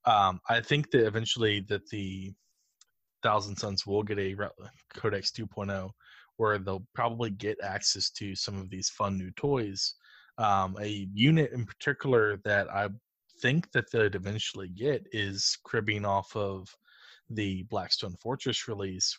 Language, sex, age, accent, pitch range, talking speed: English, male, 20-39, American, 95-115 Hz, 145 wpm